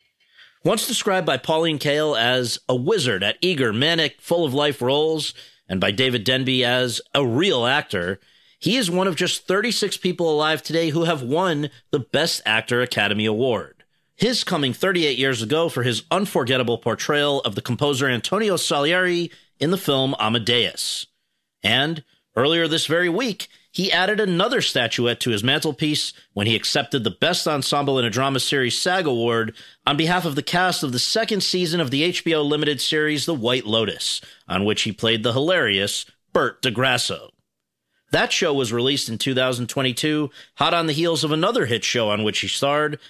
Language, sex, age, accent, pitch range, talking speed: English, male, 40-59, American, 125-170 Hz, 170 wpm